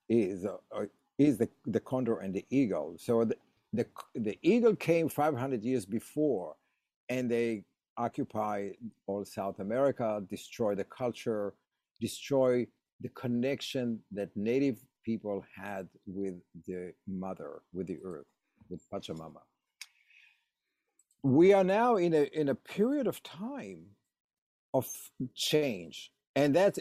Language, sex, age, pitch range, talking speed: English, male, 50-69, 105-145 Hz, 125 wpm